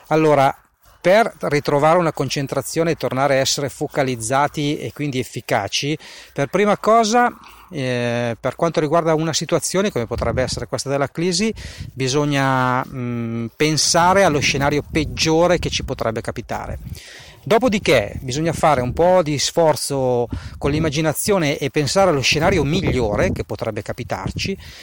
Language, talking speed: Italian, 130 wpm